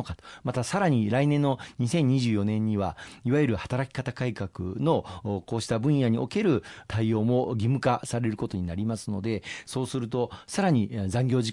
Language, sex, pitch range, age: Japanese, male, 105-140 Hz, 40-59